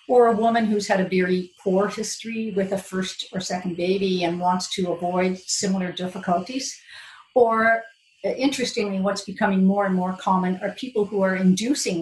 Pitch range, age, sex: 185-225 Hz, 50-69, female